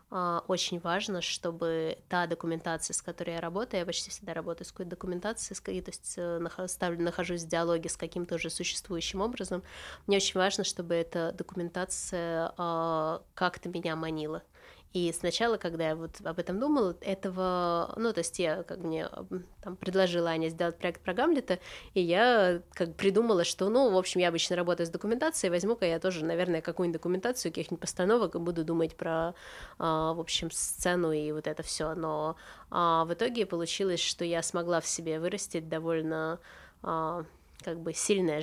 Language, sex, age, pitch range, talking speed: Russian, female, 20-39, 160-180 Hz, 160 wpm